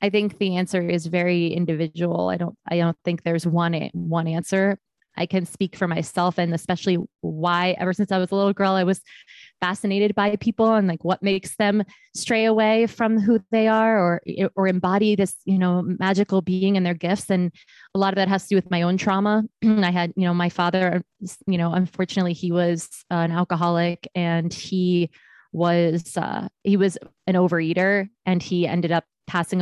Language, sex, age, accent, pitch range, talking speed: English, female, 20-39, American, 170-195 Hz, 195 wpm